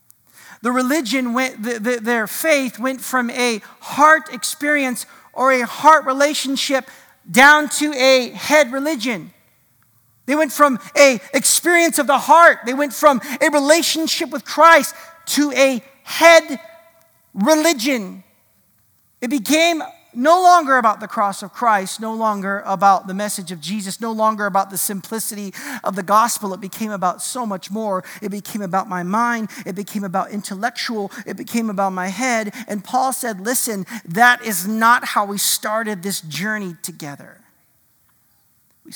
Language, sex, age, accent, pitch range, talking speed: English, male, 40-59, American, 195-265 Hz, 150 wpm